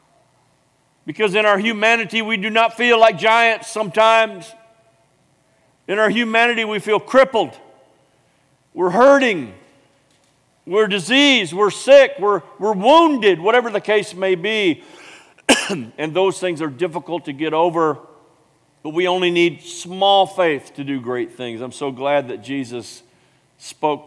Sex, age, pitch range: male, 50-69, 120-180 Hz